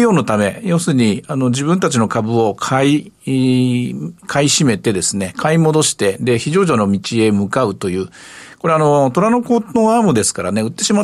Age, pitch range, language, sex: 50-69, 115-185 Hz, Japanese, male